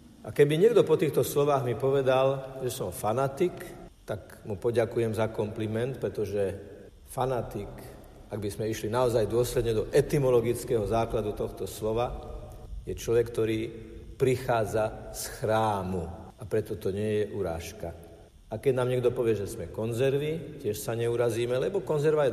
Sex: male